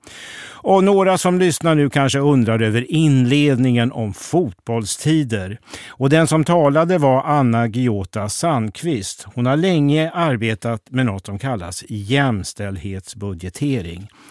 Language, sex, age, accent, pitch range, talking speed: Swedish, male, 50-69, native, 110-145 Hz, 115 wpm